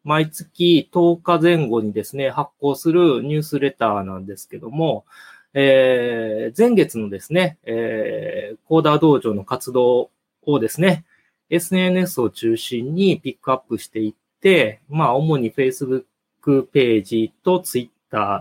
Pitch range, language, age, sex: 115-170 Hz, Japanese, 20-39, male